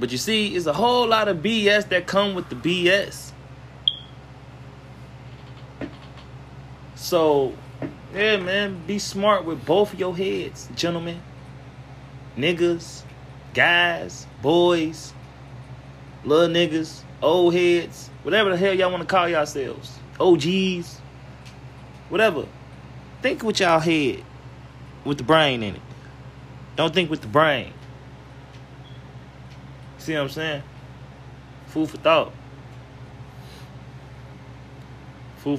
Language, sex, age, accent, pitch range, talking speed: English, male, 30-49, American, 130-175 Hz, 110 wpm